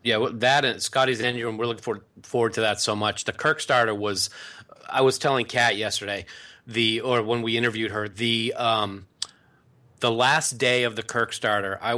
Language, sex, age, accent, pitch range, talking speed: English, male, 30-49, American, 105-125 Hz, 190 wpm